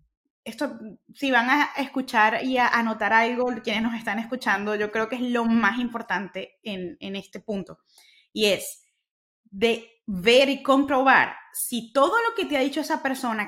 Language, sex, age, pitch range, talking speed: Spanish, female, 20-39, 225-275 Hz, 175 wpm